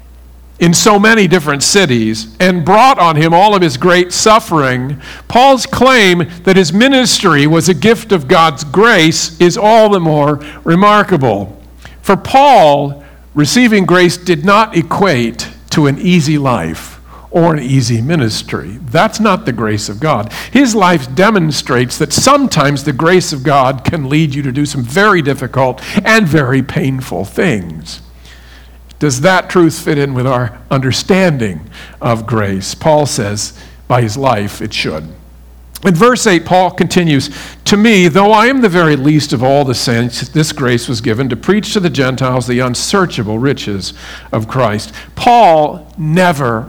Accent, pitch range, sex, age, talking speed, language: American, 125-185 Hz, male, 50-69, 155 wpm, English